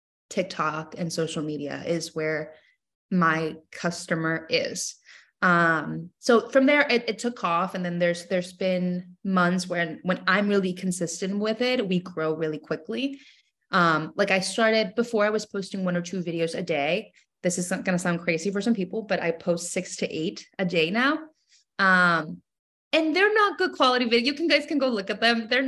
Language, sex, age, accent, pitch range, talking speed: English, female, 20-39, American, 175-235 Hz, 195 wpm